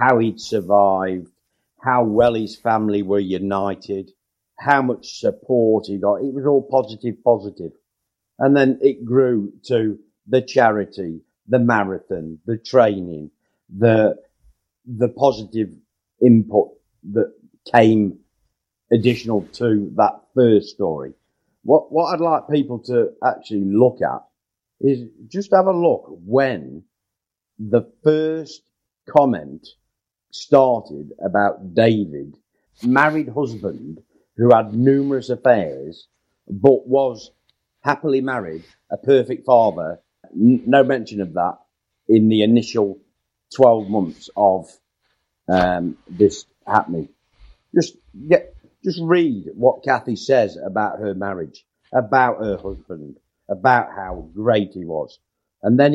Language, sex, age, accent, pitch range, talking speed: English, male, 50-69, British, 100-135 Hz, 115 wpm